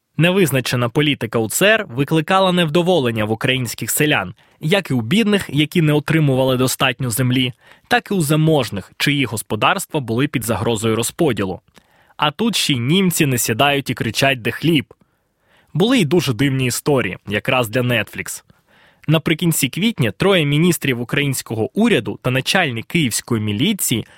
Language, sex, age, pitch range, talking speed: Ukrainian, male, 20-39, 125-165 Hz, 140 wpm